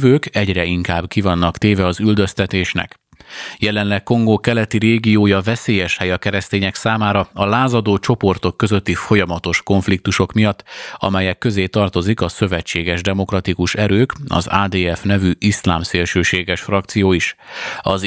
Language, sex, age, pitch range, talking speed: Hungarian, male, 30-49, 90-105 Hz, 120 wpm